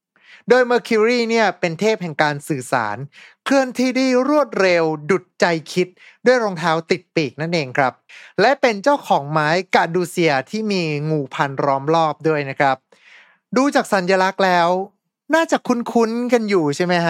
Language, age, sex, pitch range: Thai, 20-39, male, 165-220 Hz